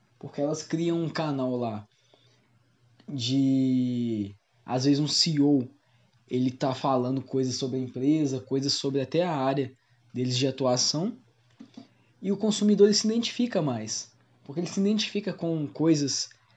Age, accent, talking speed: 20-39, Brazilian, 140 wpm